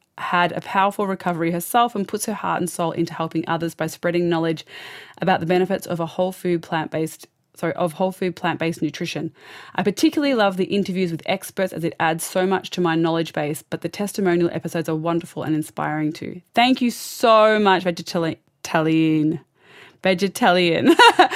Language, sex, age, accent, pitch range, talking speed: English, female, 20-39, Australian, 165-200 Hz, 175 wpm